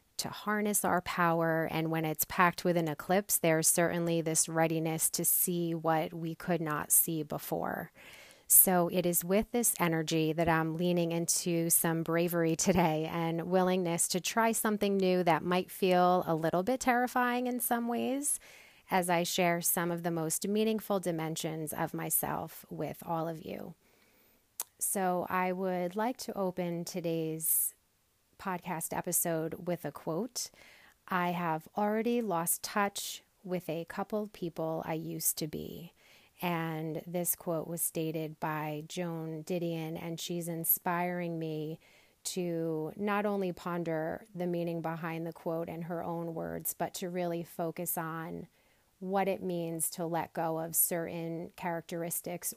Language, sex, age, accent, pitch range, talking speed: English, female, 30-49, American, 165-185 Hz, 150 wpm